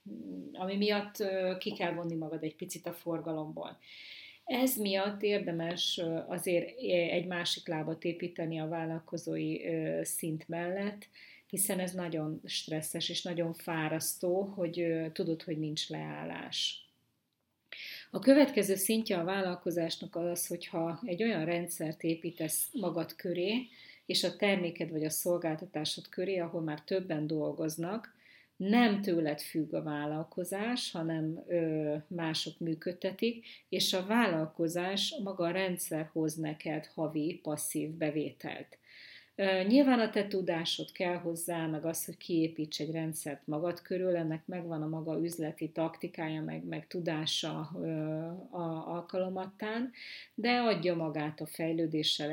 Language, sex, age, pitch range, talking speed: Hungarian, female, 30-49, 155-180 Hz, 125 wpm